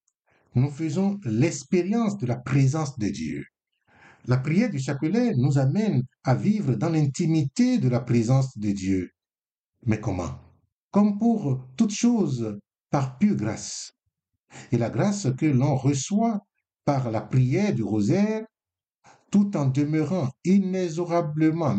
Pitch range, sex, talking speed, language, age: 125-185 Hz, male, 130 wpm, French, 60-79